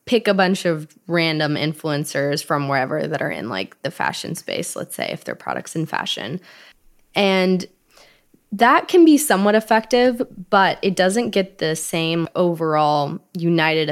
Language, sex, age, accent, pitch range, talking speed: English, female, 20-39, American, 150-185 Hz, 155 wpm